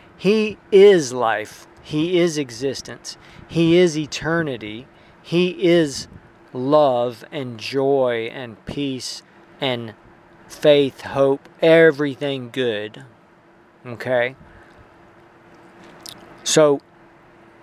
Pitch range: 125-165 Hz